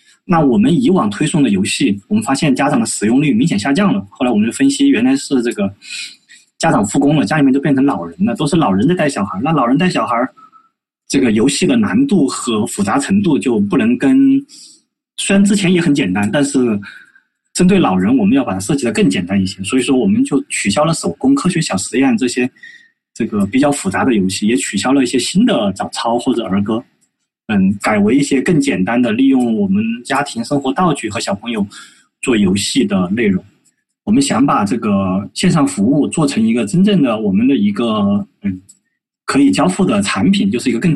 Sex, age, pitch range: male, 20-39, 130-220 Hz